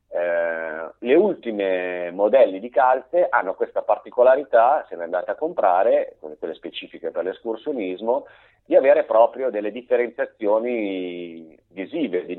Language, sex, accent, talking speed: Italian, male, native, 125 wpm